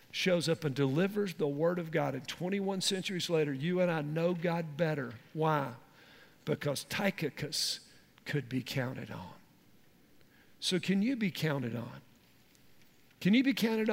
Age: 50-69